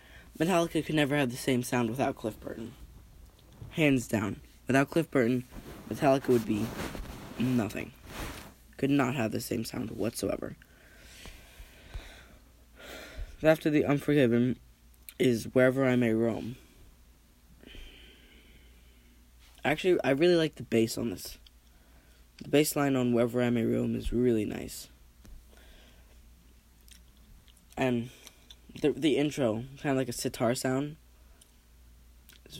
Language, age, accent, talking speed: English, 10-29, American, 120 wpm